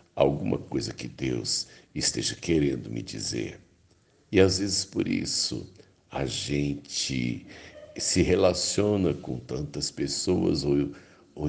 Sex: male